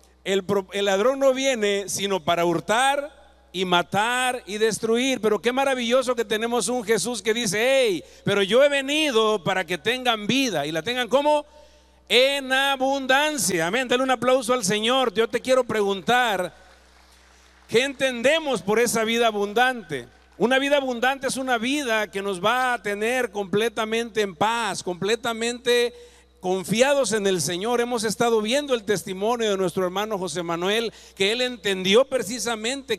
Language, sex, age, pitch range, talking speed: Spanish, male, 50-69, 190-245 Hz, 155 wpm